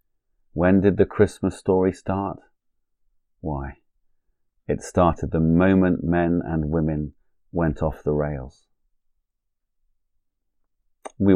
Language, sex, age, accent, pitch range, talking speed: English, male, 30-49, British, 80-95 Hz, 100 wpm